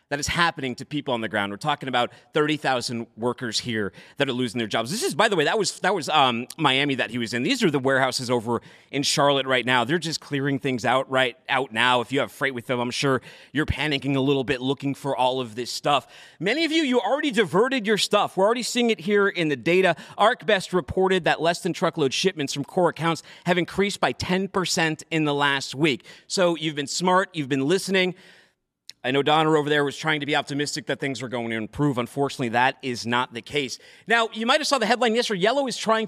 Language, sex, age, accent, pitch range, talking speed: English, male, 30-49, American, 135-195 Hz, 240 wpm